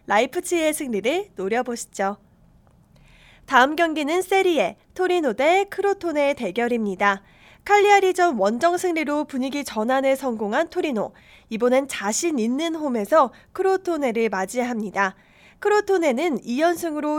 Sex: female